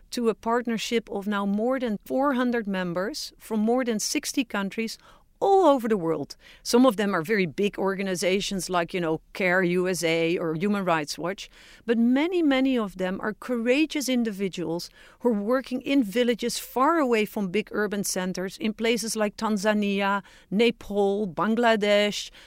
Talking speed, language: 160 wpm, English